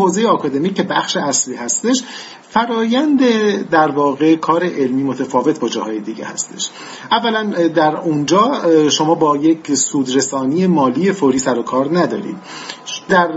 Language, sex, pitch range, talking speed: Persian, male, 135-180 Hz, 130 wpm